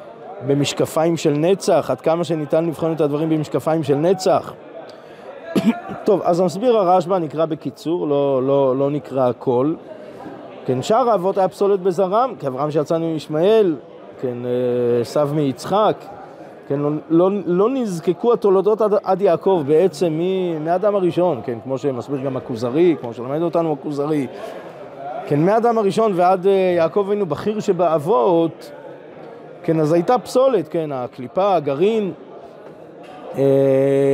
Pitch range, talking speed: 150-195 Hz, 130 wpm